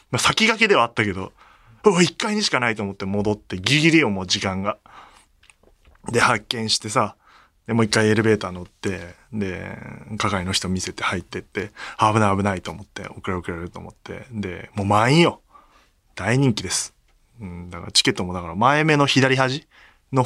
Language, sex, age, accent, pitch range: Japanese, male, 20-39, native, 100-160 Hz